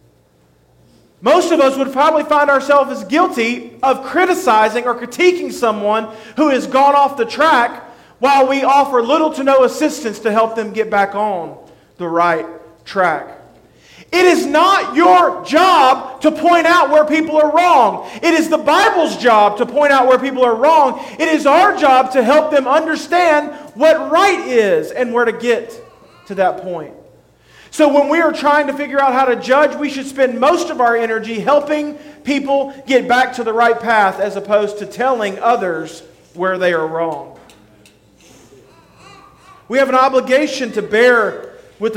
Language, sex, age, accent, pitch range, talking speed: English, male, 40-59, American, 215-300 Hz, 170 wpm